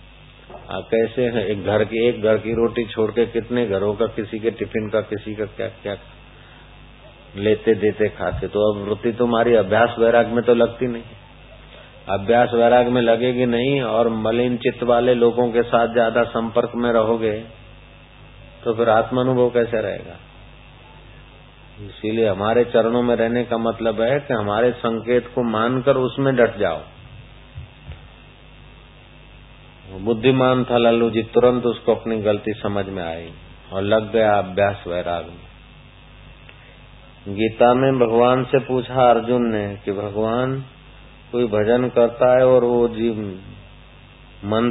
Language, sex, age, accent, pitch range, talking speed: Hindi, male, 50-69, native, 105-125 Hz, 140 wpm